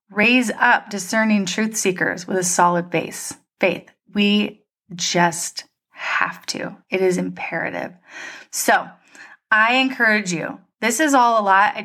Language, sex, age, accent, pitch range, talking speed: English, female, 30-49, American, 190-250 Hz, 135 wpm